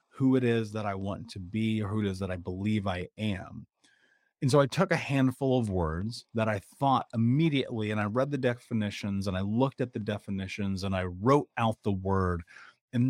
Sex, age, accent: male, 30-49, American